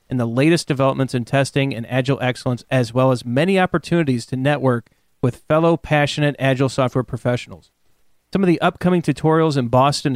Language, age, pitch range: English, 30-49, 130-155 Hz